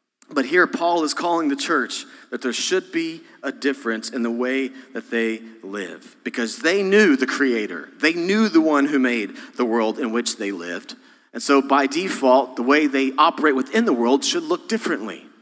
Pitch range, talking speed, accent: 135-220 Hz, 195 wpm, American